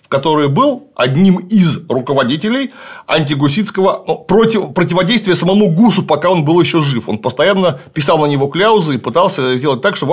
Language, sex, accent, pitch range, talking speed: Russian, male, native, 140-200 Hz, 160 wpm